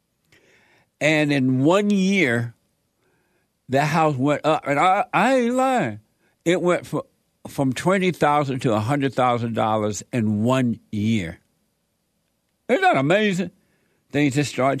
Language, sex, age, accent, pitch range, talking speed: English, male, 60-79, American, 120-165 Hz, 120 wpm